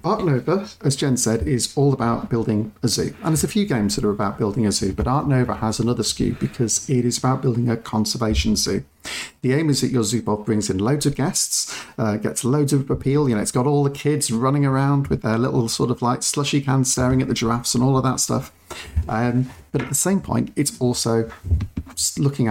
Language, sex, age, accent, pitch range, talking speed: English, male, 40-59, British, 110-140 Hz, 235 wpm